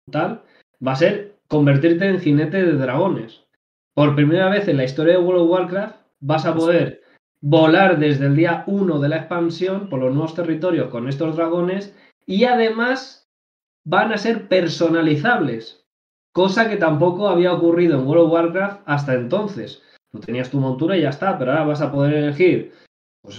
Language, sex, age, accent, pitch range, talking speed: Spanish, male, 20-39, Spanish, 135-170 Hz, 175 wpm